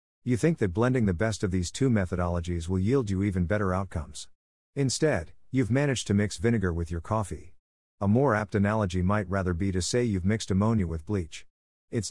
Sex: male